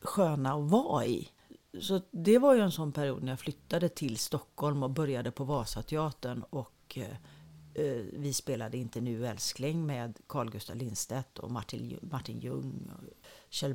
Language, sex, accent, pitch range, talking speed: Swedish, female, native, 130-180 Hz, 155 wpm